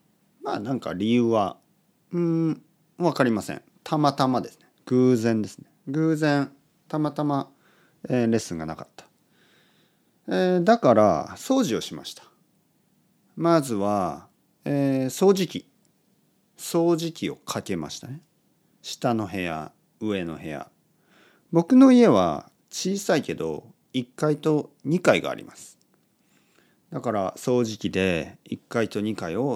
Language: Japanese